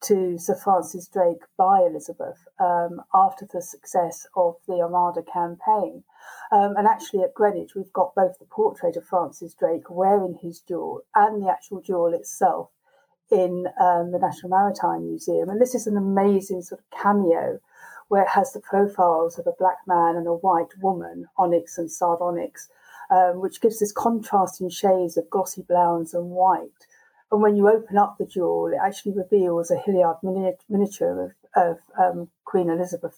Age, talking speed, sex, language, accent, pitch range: 50-69, 170 wpm, female, English, British, 175-205 Hz